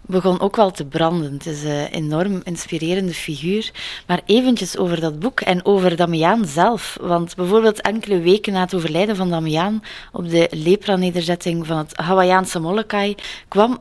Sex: female